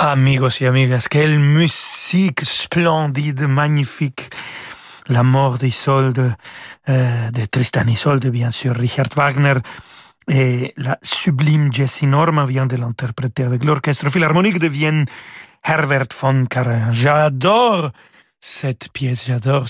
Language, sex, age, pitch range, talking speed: French, male, 40-59, 130-160 Hz, 115 wpm